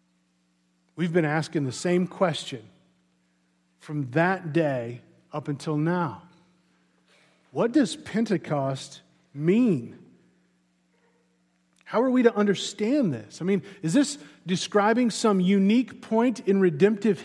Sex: male